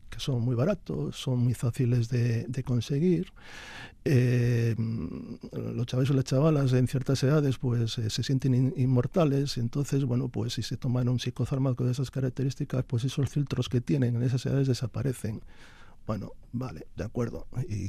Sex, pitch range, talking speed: male, 115-135 Hz, 170 wpm